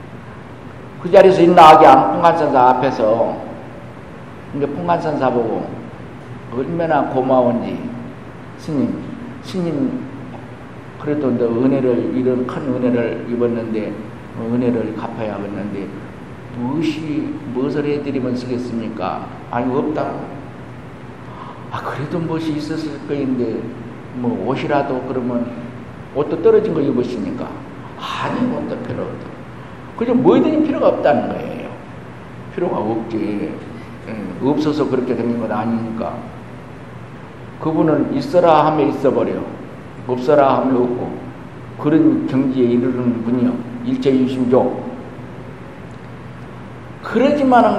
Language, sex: Korean, male